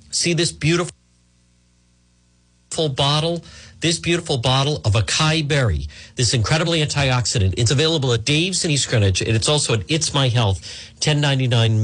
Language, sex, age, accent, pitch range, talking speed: English, male, 50-69, American, 110-155 Hz, 140 wpm